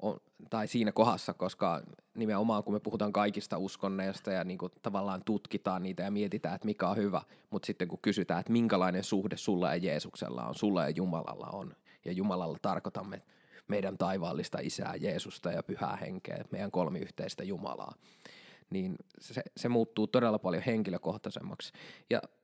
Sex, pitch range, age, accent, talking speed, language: male, 105-130 Hz, 20-39, native, 150 wpm, Finnish